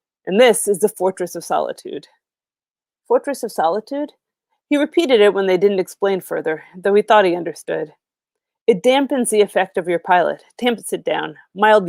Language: English